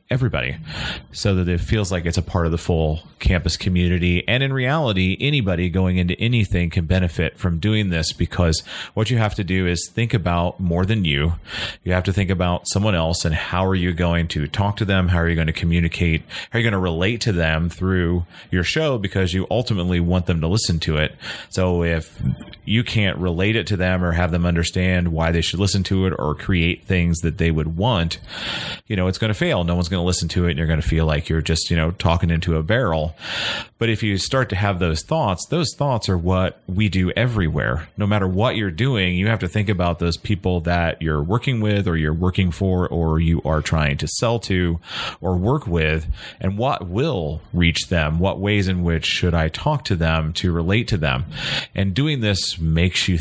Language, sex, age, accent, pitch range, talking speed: English, male, 30-49, American, 85-100 Hz, 225 wpm